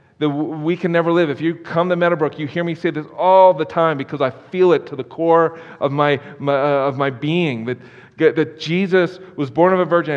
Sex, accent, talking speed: male, American, 235 wpm